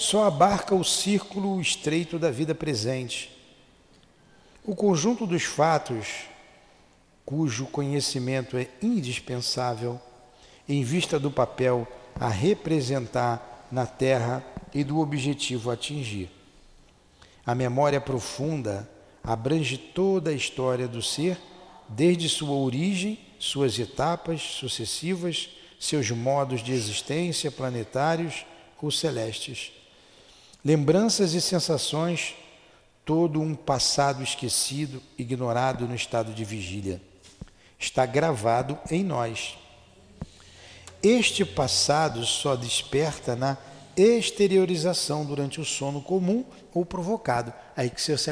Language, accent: Portuguese, Brazilian